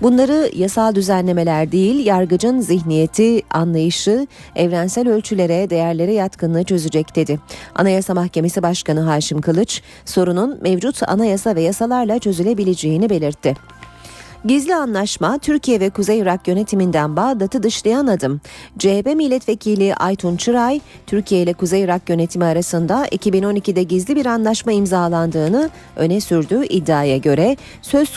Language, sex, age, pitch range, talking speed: Turkish, female, 40-59, 165-220 Hz, 115 wpm